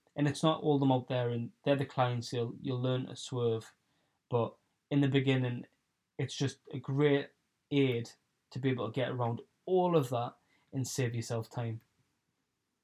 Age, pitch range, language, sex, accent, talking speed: 10-29, 125-150 Hz, English, male, British, 180 wpm